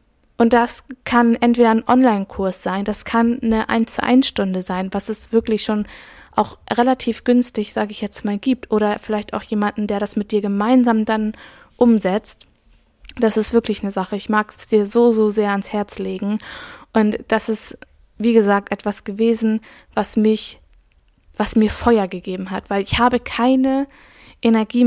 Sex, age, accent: female, 20-39, German